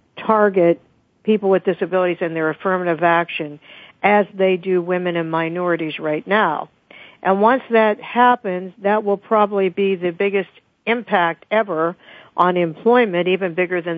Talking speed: 140 wpm